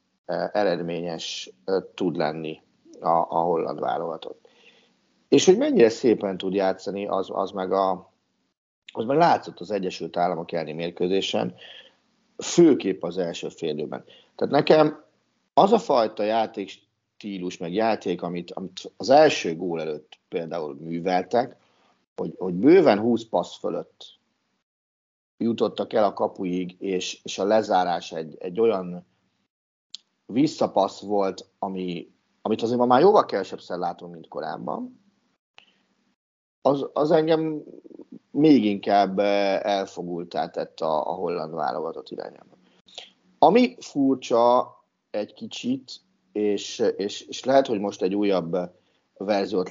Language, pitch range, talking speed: Hungarian, 90-135 Hz, 115 wpm